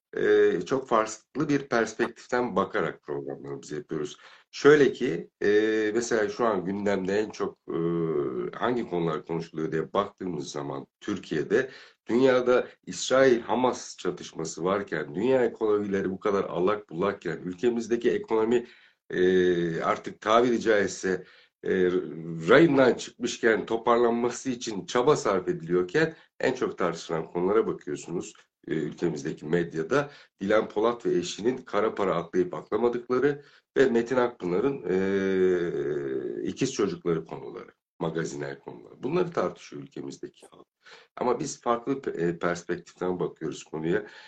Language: Turkish